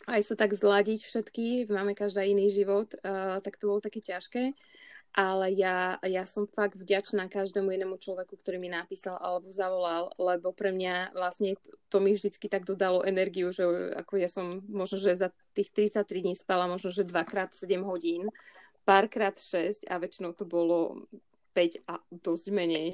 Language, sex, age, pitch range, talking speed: Slovak, female, 20-39, 190-210 Hz, 175 wpm